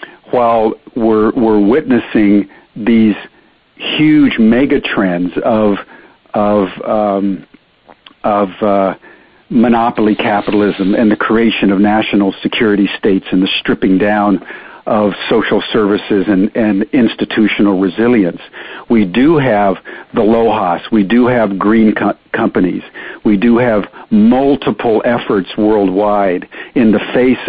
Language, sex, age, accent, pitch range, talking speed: English, male, 50-69, American, 100-115 Hz, 115 wpm